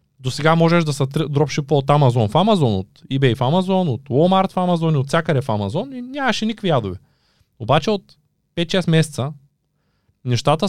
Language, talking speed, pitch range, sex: Bulgarian, 180 wpm, 120-160 Hz, male